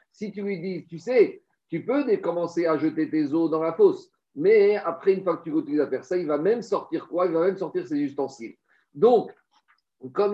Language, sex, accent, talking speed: French, male, French, 230 wpm